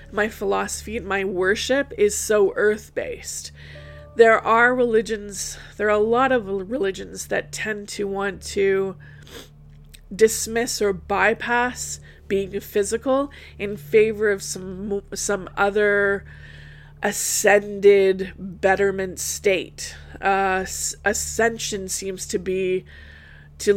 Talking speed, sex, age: 105 wpm, female, 20-39